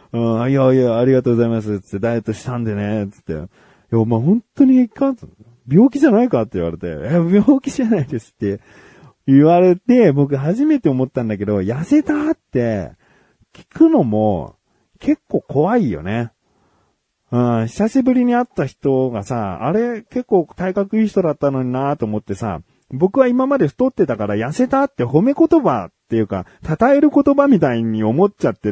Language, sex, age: Japanese, male, 40-59